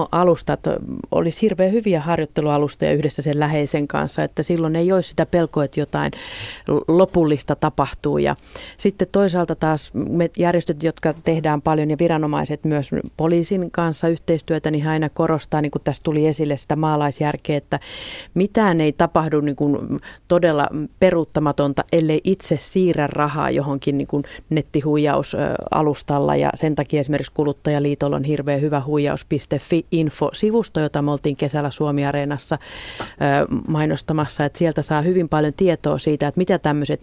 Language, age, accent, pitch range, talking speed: Finnish, 30-49, native, 145-170 Hz, 135 wpm